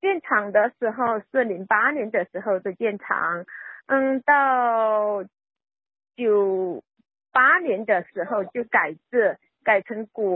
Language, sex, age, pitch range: Chinese, female, 40-59, 230-305 Hz